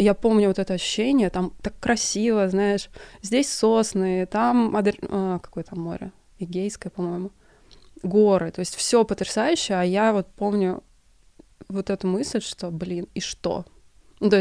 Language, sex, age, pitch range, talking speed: Russian, female, 20-39, 185-220 Hz, 140 wpm